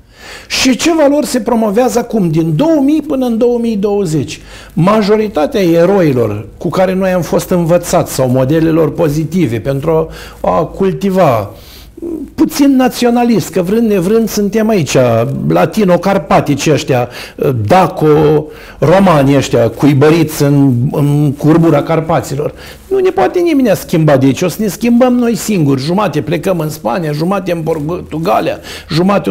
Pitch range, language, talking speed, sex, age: 150-215 Hz, Romanian, 130 wpm, male, 60-79